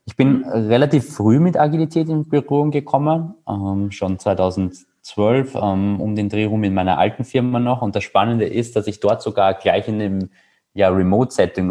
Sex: male